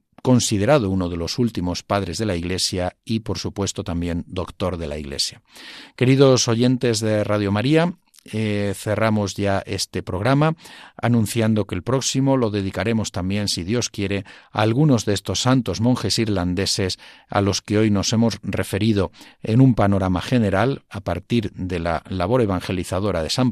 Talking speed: 160 wpm